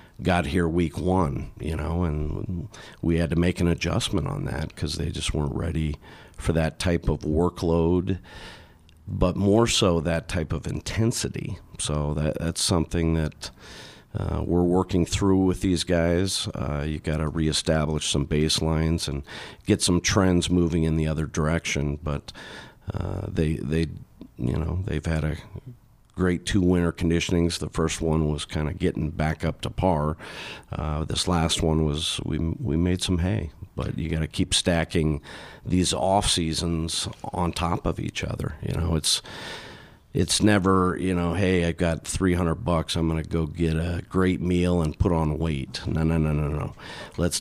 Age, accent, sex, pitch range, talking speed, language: 50-69, American, male, 80-95 Hz, 170 wpm, English